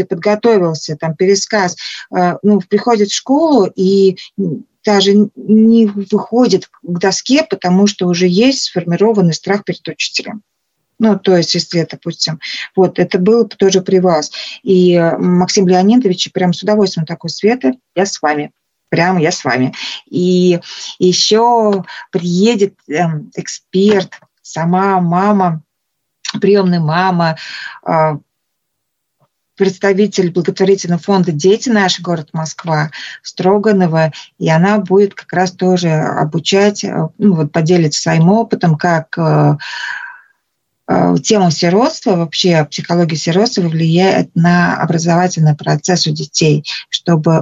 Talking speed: 120 wpm